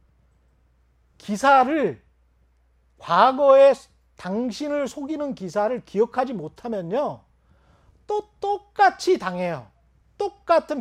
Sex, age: male, 40-59